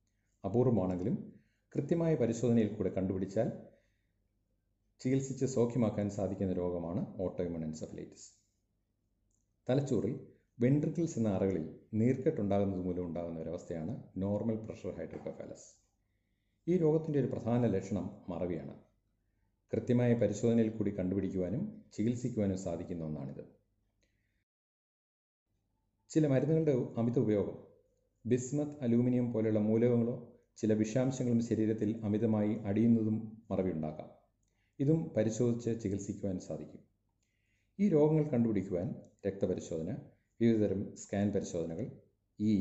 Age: 40-59